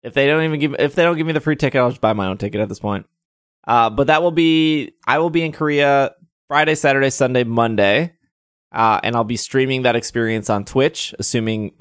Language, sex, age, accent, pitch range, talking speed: English, male, 20-39, American, 110-150 Hz, 240 wpm